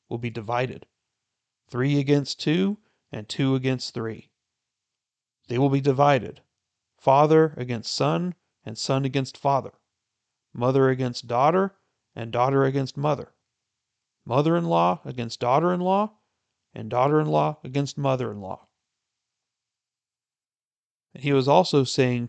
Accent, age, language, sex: American, 40-59, English, male